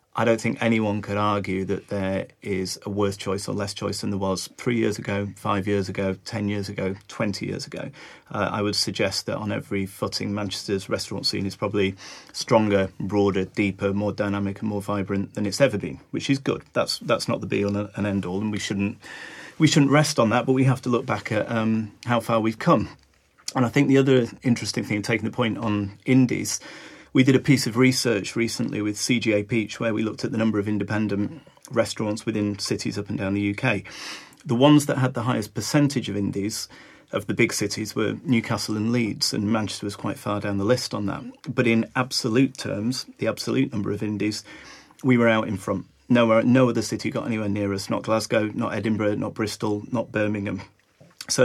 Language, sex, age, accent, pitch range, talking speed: English, male, 30-49, British, 100-120 Hz, 210 wpm